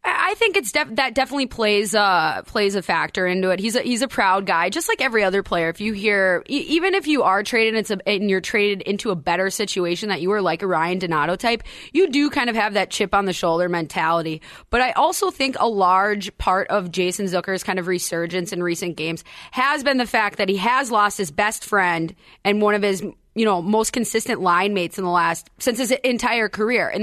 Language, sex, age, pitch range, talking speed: English, female, 20-39, 185-240 Hz, 230 wpm